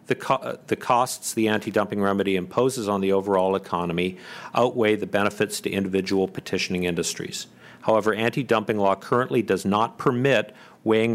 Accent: American